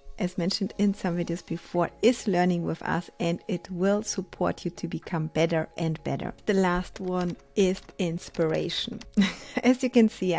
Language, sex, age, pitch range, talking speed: English, female, 30-49, 175-200 Hz, 170 wpm